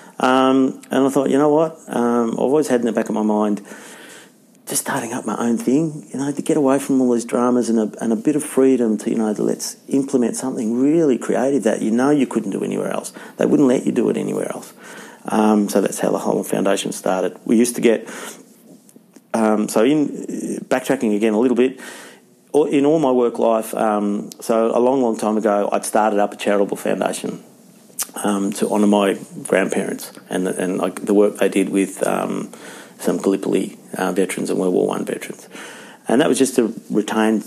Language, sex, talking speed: English, male, 210 wpm